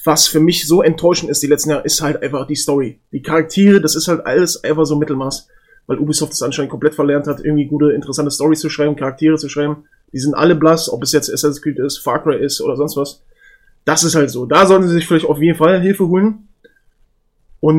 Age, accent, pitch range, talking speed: 20-39, German, 145-175 Hz, 235 wpm